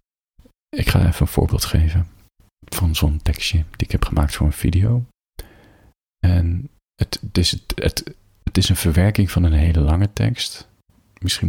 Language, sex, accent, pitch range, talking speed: Dutch, male, Dutch, 80-100 Hz, 145 wpm